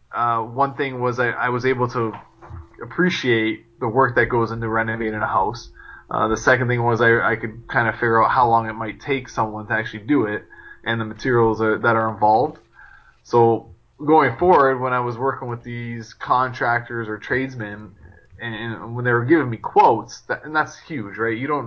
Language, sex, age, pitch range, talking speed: English, male, 20-39, 110-130 Hz, 210 wpm